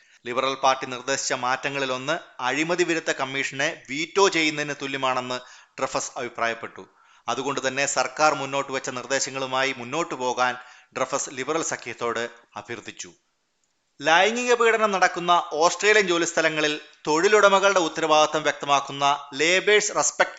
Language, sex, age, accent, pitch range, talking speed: Malayalam, male, 30-49, native, 130-160 Hz, 105 wpm